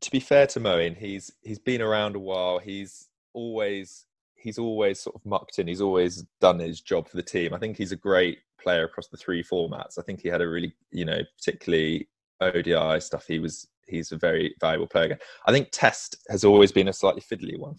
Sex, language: male, English